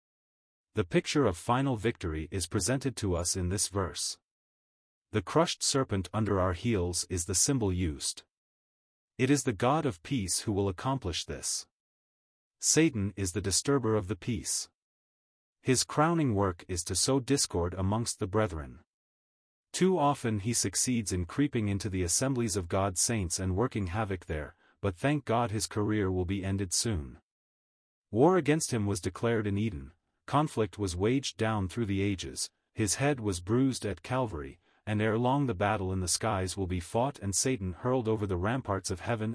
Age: 30-49